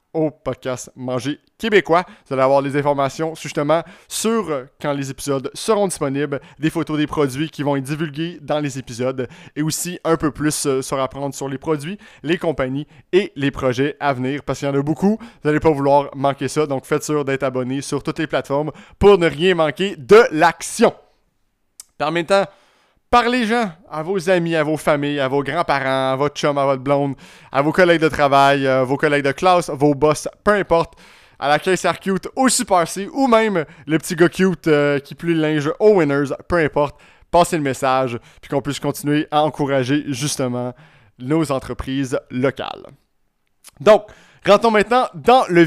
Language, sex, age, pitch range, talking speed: French, male, 30-49, 140-175 Hz, 190 wpm